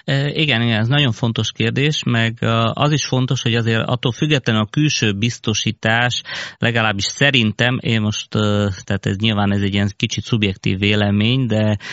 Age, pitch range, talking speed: 30-49, 105-120 Hz, 155 wpm